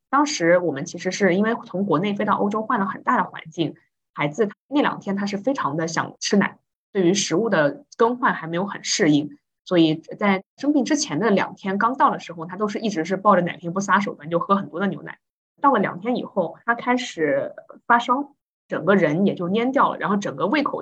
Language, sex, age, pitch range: Chinese, female, 20-39, 170-225 Hz